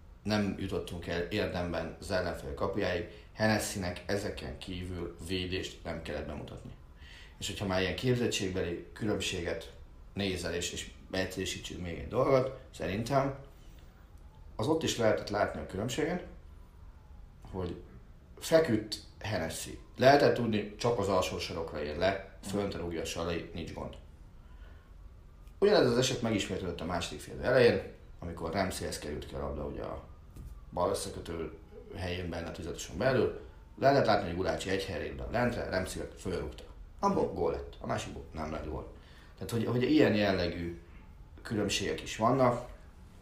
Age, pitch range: 30-49, 80-105 Hz